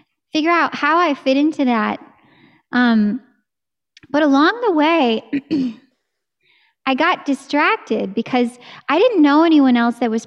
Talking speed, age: 135 wpm, 10-29